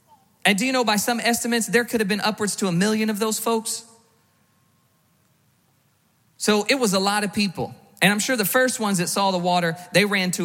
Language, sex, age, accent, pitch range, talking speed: English, male, 40-59, American, 175-220 Hz, 220 wpm